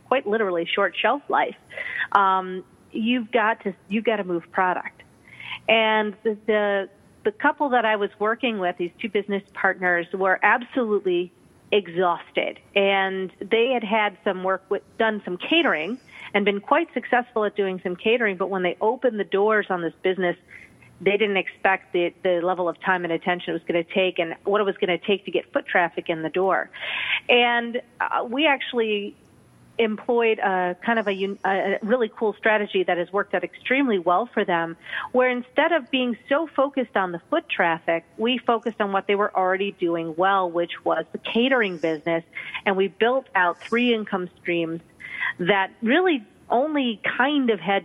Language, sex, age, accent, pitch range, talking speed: English, female, 40-59, American, 185-230 Hz, 180 wpm